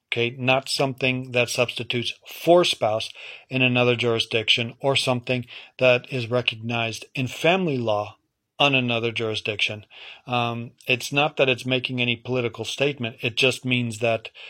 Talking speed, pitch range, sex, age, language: 140 wpm, 115-125 Hz, male, 40-59, English